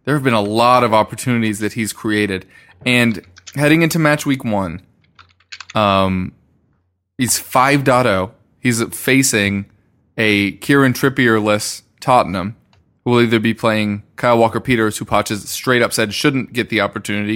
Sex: male